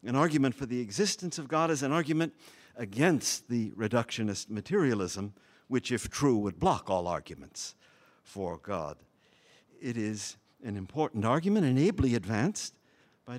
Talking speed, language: 145 wpm, English